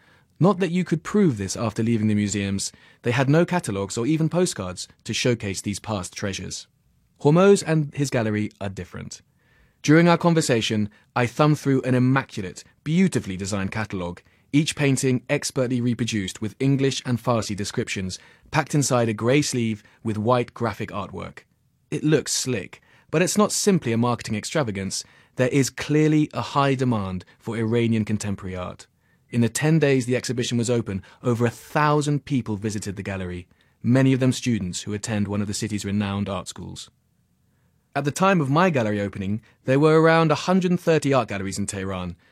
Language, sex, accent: Chinese, male, British